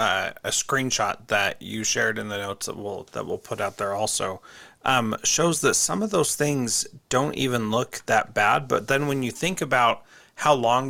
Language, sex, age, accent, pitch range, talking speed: English, male, 30-49, American, 115-135 Hz, 205 wpm